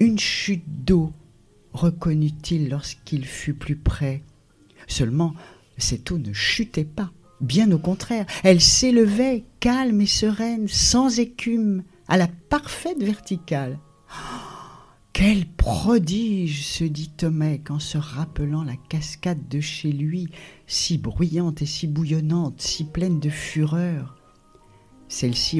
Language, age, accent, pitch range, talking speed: French, 50-69, French, 145-200 Hz, 120 wpm